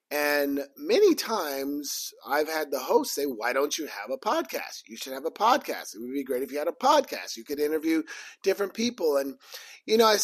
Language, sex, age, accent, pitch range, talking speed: English, male, 30-49, American, 140-195 Hz, 215 wpm